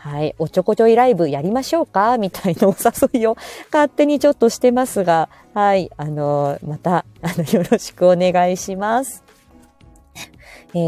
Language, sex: Japanese, female